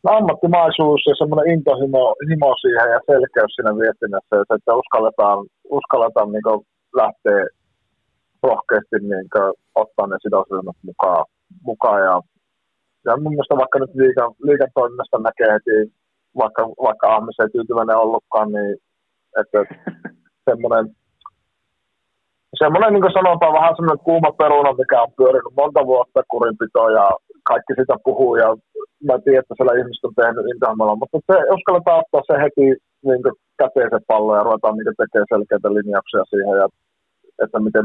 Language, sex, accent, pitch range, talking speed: Finnish, male, native, 110-170 Hz, 125 wpm